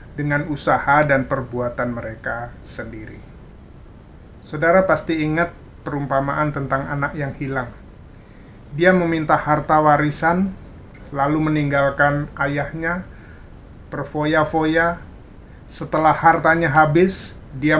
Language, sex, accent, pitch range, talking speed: Indonesian, male, native, 135-160 Hz, 90 wpm